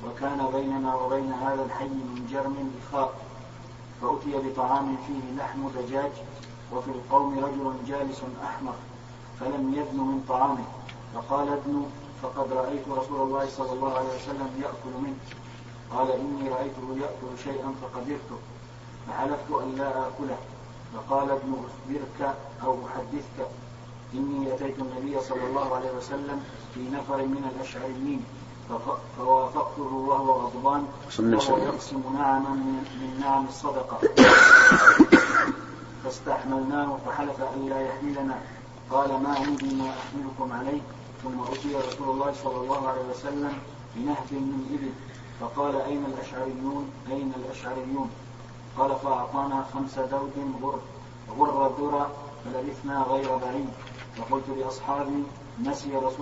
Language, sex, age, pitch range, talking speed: Arabic, male, 40-59, 130-140 Hz, 105 wpm